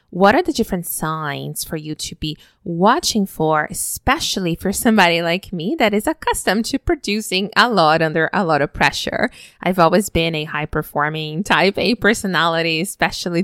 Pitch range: 155-195 Hz